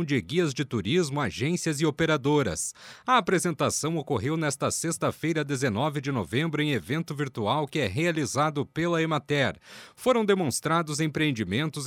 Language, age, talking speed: Portuguese, 40-59, 130 wpm